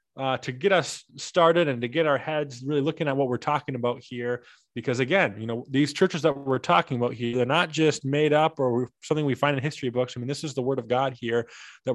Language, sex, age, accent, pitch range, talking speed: English, male, 20-39, American, 120-160 Hz, 255 wpm